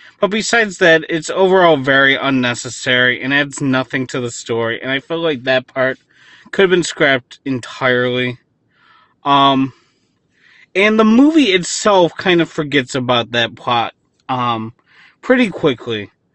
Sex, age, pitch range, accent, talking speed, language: male, 30-49, 130-180 Hz, American, 140 wpm, English